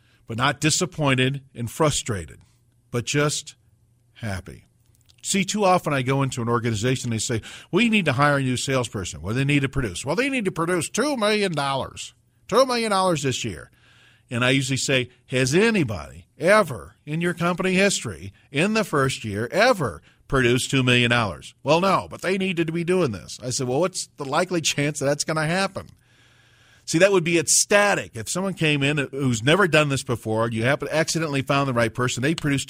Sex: male